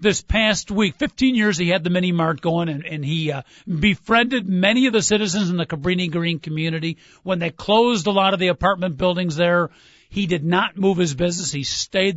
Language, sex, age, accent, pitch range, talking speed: English, male, 50-69, American, 165-215 Hz, 200 wpm